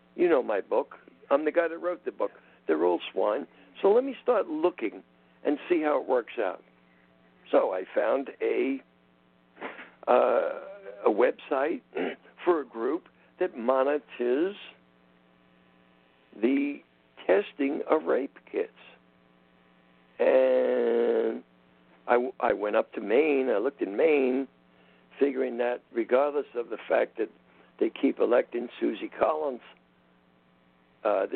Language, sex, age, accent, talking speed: English, male, 60-79, American, 130 wpm